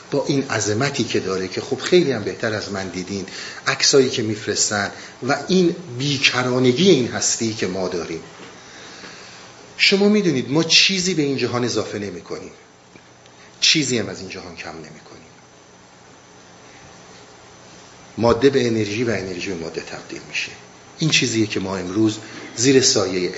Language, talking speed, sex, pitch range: Persian, 155 wpm, male, 85-135 Hz